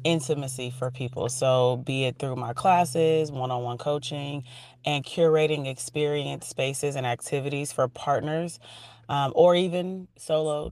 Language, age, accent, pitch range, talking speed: English, 30-49, American, 130-155 Hz, 130 wpm